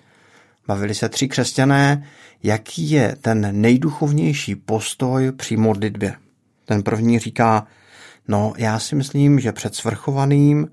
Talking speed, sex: 115 wpm, male